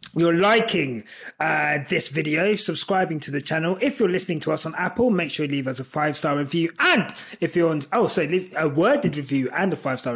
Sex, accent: male, British